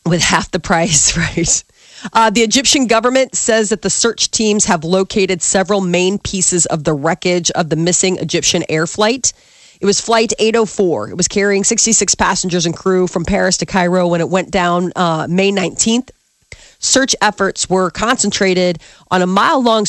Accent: American